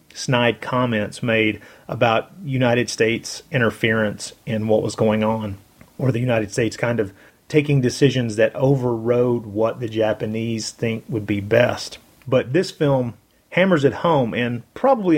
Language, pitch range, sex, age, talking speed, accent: English, 115-145 Hz, male, 30-49, 145 wpm, American